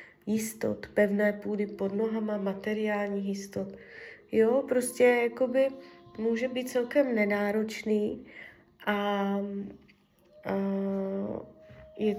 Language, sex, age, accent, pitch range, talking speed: Czech, female, 20-39, native, 200-230 Hz, 85 wpm